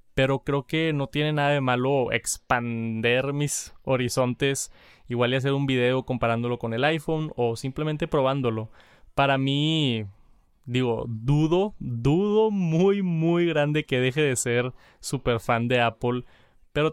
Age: 20-39